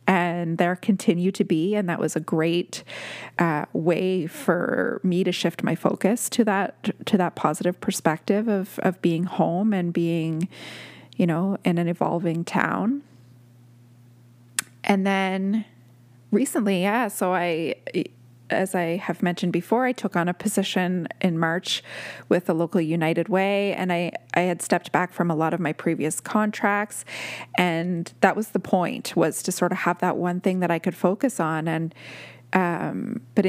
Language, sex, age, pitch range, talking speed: English, female, 20-39, 165-195 Hz, 170 wpm